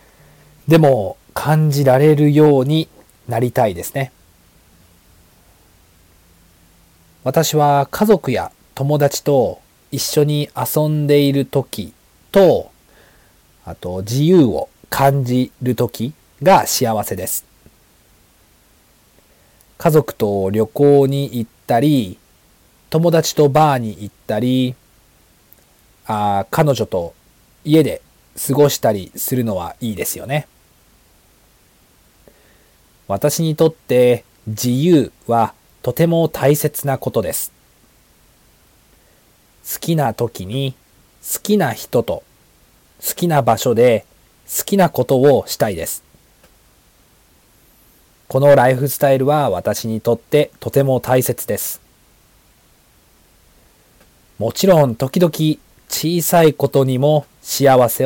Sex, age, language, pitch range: male, 40-59, Japanese, 100-145 Hz